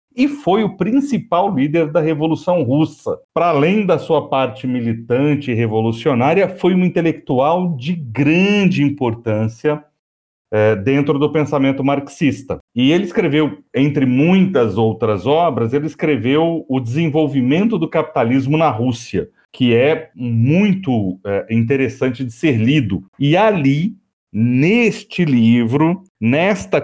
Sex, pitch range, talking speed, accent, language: male, 125-175 Hz, 120 wpm, Brazilian, Portuguese